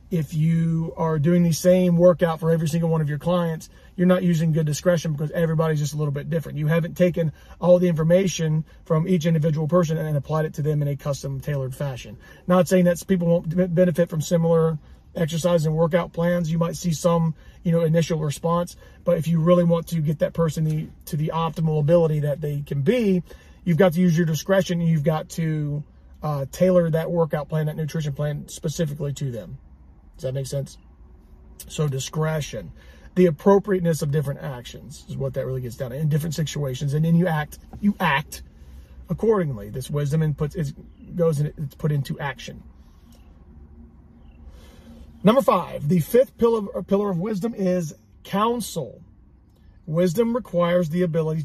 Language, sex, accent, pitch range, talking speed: English, male, American, 145-175 Hz, 185 wpm